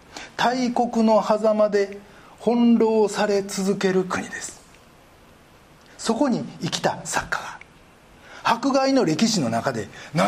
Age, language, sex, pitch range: 40-59, Japanese, male, 165-250 Hz